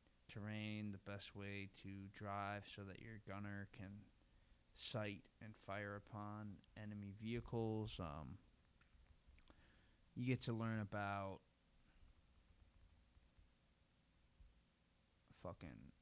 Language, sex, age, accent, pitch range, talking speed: English, male, 20-39, American, 80-115 Hz, 90 wpm